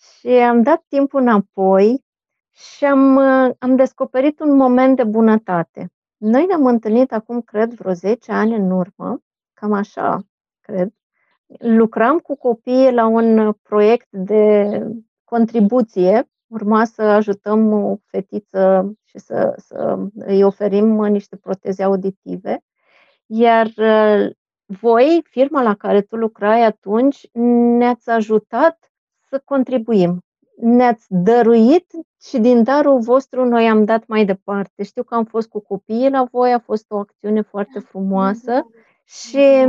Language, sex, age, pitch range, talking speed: Romanian, female, 30-49, 210-255 Hz, 125 wpm